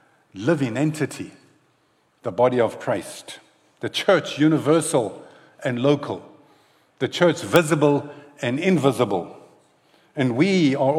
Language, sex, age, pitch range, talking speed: English, male, 50-69, 120-155 Hz, 105 wpm